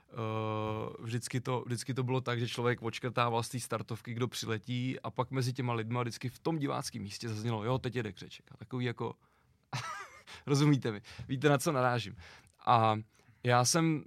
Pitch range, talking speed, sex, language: 120-140 Hz, 180 wpm, male, Czech